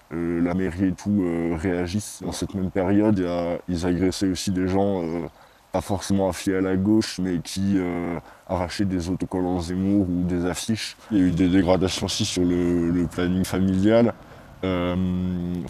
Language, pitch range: French, 85-95 Hz